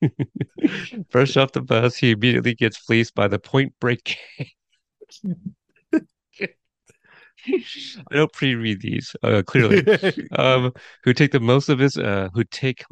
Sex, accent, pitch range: male, American, 100-130 Hz